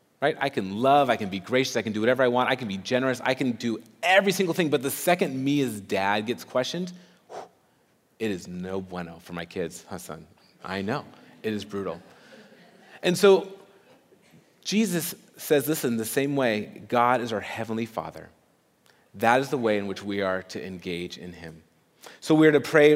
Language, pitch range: English, 100-145 Hz